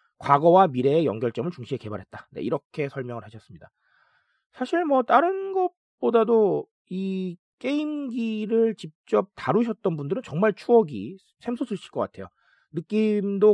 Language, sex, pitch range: Korean, male, 155-240 Hz